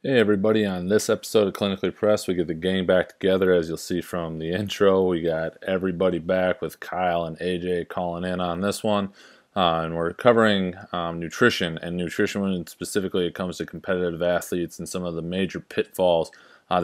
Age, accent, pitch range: 30-49, American, 85-95 Hz